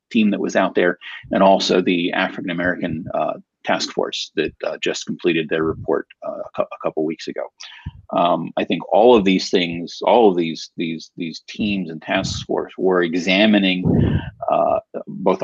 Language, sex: English, male